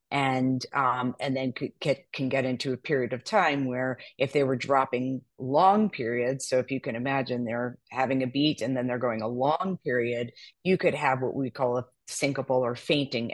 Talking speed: 205 wpm